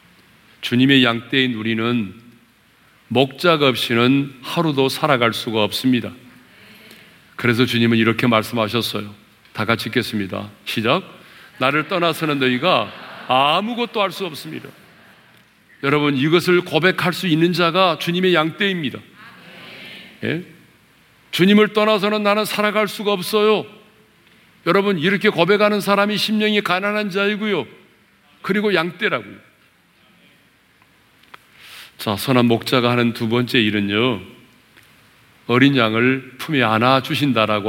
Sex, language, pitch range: male, Korean, 115-170 Hz